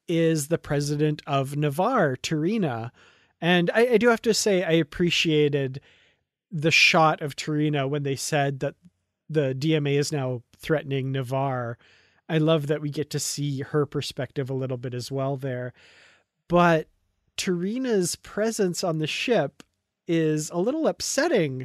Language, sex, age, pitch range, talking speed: English, male, 30-49, 150-215 Hz, 150 wpm